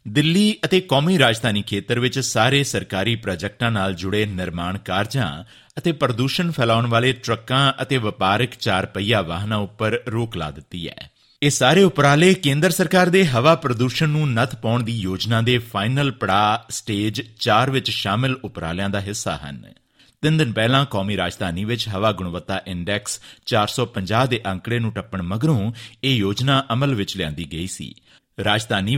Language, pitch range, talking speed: Punjabi, 100-140 Hz, 155 wpm